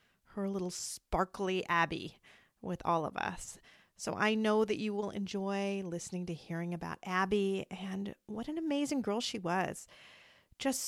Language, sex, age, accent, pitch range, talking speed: English, female, 40-59, American, 170-220 Hz, 155 wpm